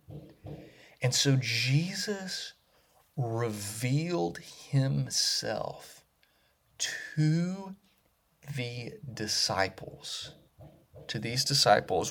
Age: 30-49